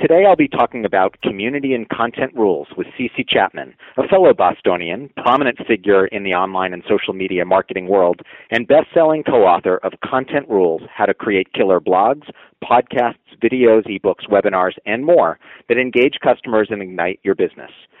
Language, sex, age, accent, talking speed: English, male, 40-59, American, 165 wpm